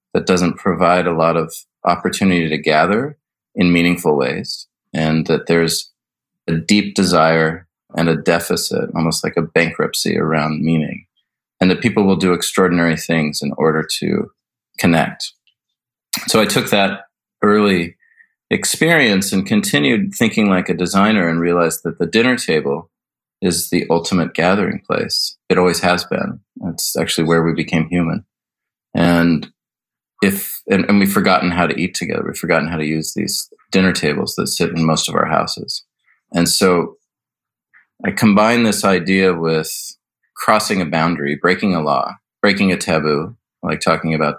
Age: 30-49